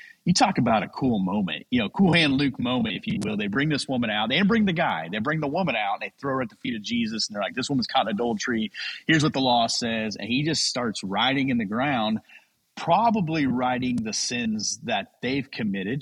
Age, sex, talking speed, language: 30-49, male, 250 wpm, English